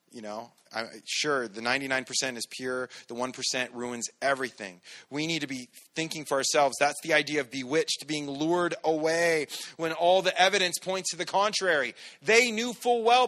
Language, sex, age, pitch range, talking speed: English, male, 30-49, 135-185 Hz, 175 wpm